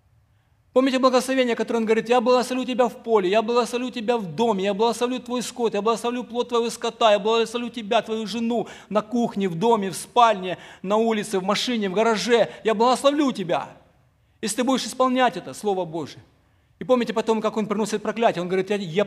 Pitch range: 155-225 Hz